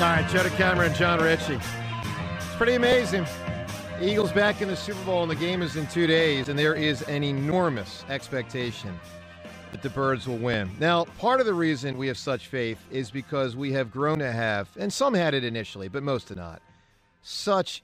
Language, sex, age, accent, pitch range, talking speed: English, male, 40-59, American, 125-180 Hz, 205 wpm